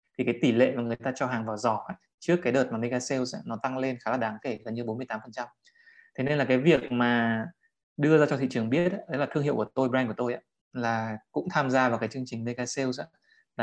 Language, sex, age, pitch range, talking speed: English, male, 20-39, 115-140 Hz, 255 wpm